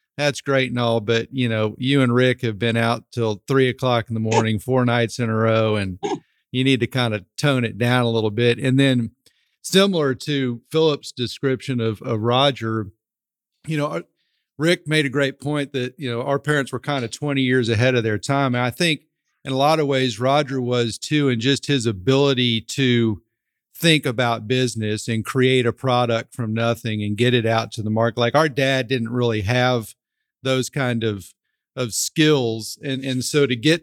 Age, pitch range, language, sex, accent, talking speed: 40-59, 115-135 Hz, English, male, American, 200 wpm